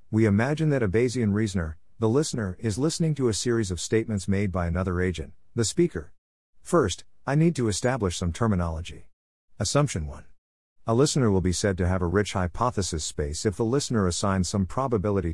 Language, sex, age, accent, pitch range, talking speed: English, male, 50-69, American, 90-115 Hz, 185 wpm